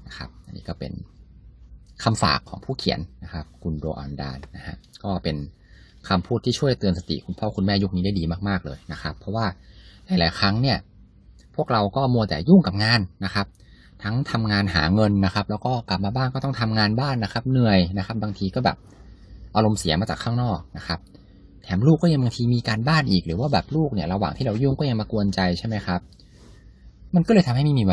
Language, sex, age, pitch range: English, male, 20-39, 85-120 Hz